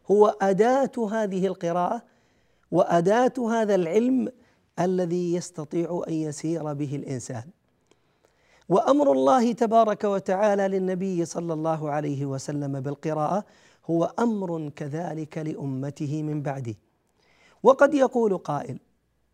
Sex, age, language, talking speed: male, 40-59, Arabic, 100 wpm